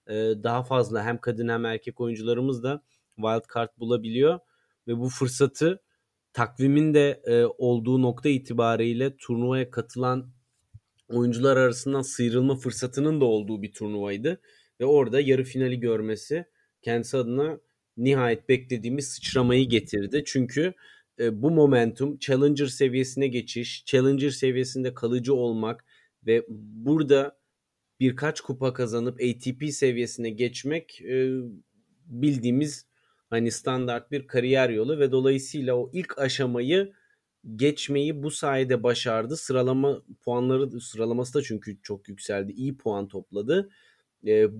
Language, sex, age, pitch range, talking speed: Turkish, male, 40-59, 120-145 Hz, 115 wpm